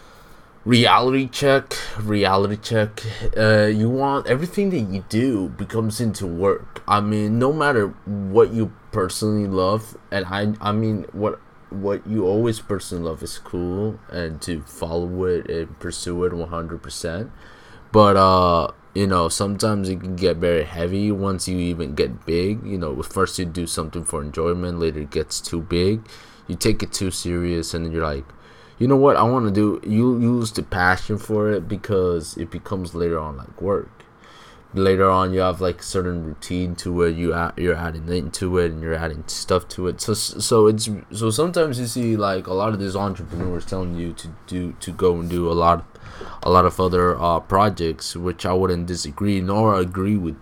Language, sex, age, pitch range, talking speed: English, male, 20-39, 85-105 Hz, 185 wpm